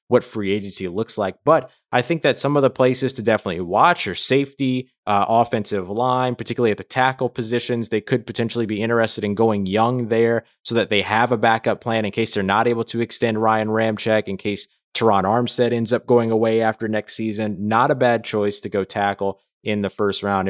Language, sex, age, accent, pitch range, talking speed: English, male, 20-39, American, 105-135 Hz, 215 wpm